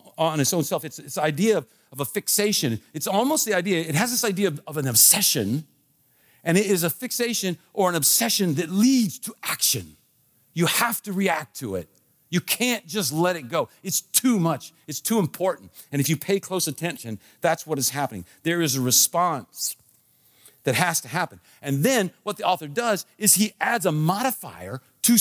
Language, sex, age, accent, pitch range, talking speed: English, male, 50-69, American, 135-195 Hz, 200 wpm